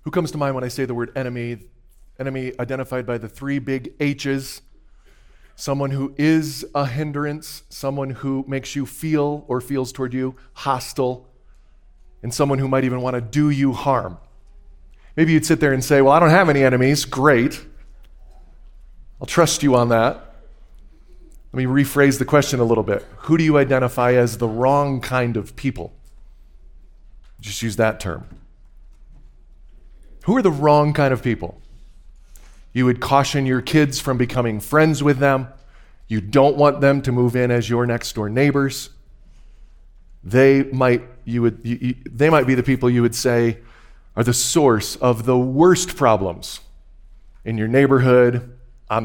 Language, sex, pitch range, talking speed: English, male, 115-140 Hz, 165 wpm